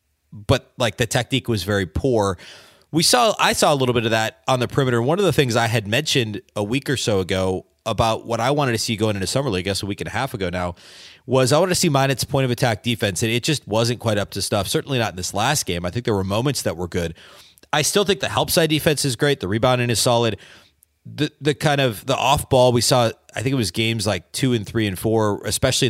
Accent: American